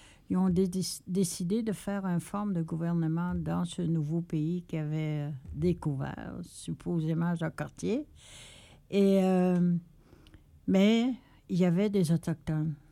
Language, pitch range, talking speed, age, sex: French, 155-185 Hz, 130 wpm, 60-79, female